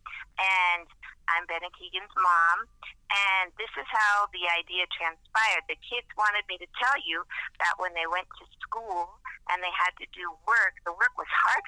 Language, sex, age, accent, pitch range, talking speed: English, female, 40-59, American, 165-205 Hz, 185 wpm